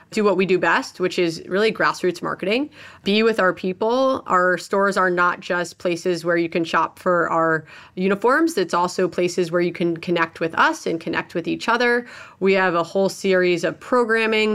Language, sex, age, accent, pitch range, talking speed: English, female, 30-49, American, 175-215 Hz, 200 wpm